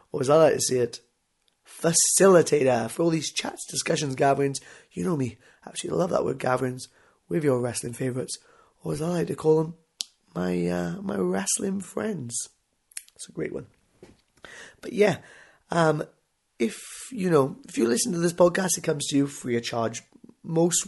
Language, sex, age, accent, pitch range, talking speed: English, male, 20-39, British, 125-155 Hz, 180 wpm